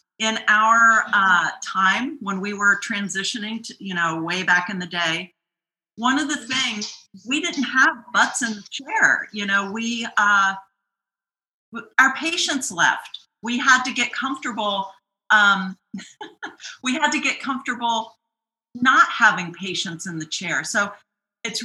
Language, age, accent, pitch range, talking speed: English, 40-59, American, 200-245 Hz, 145 wpm